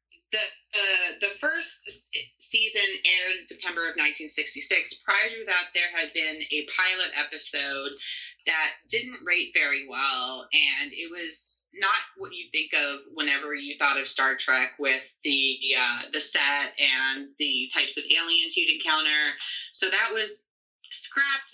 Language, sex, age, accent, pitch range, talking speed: English, female, 30-49, American, 150-225 Hz, 150 wpm